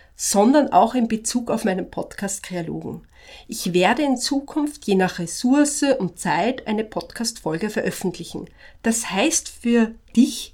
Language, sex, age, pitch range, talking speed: German, female, 40-59, 190-260 Hz, 130 wpm